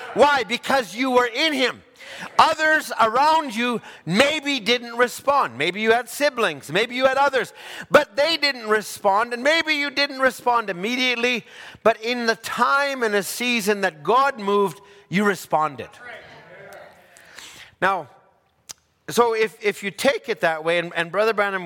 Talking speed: 150 wpm